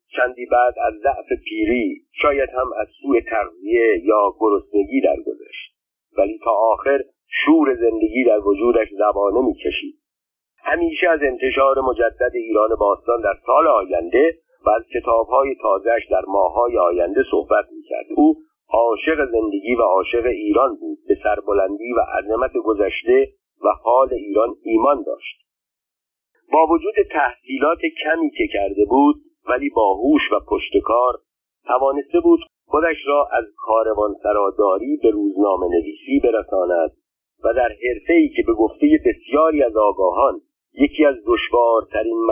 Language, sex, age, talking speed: Persian, male, 50-69, 130 wpm